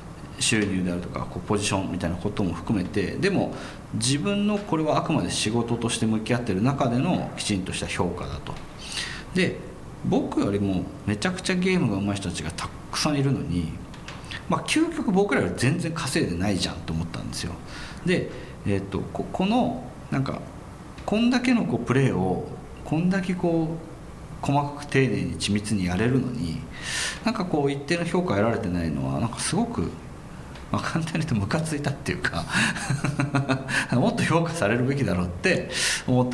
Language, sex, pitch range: Japanese, male, 100-155 Hz